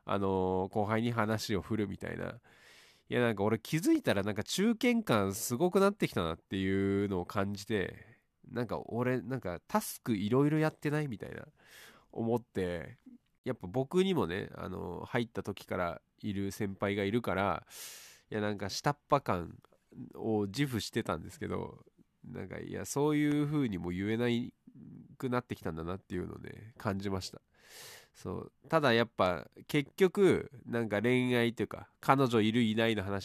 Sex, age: male, 20-39